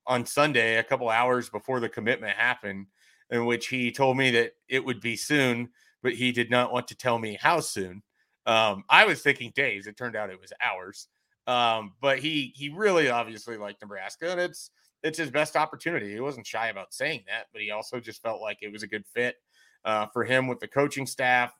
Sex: male